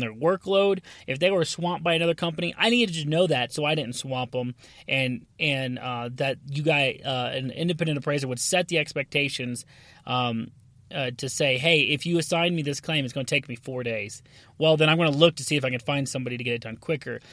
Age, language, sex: 30-49, English, male